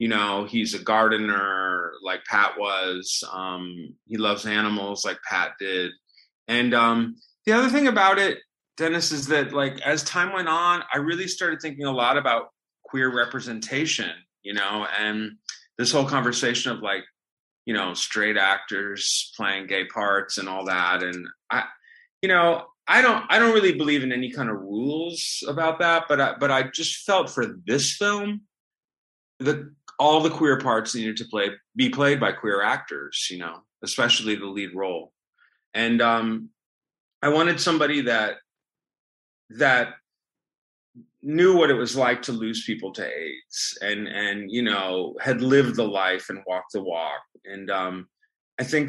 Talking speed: 165 wpm